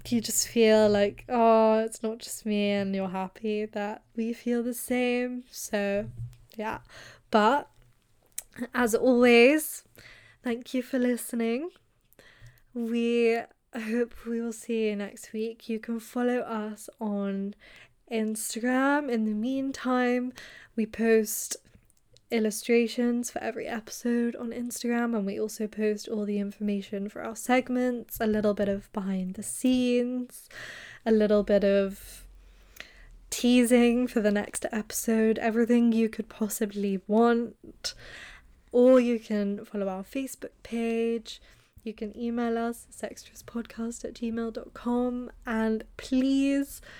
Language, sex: English, female